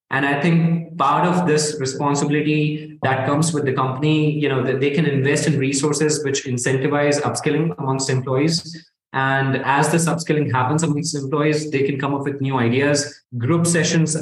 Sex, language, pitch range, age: male, English, 135-160 Hz, 20-39